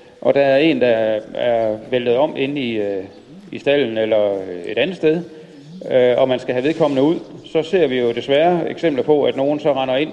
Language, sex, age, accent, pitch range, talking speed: Danish, male, 40-59, native, 115-150 Hz, 200 wpm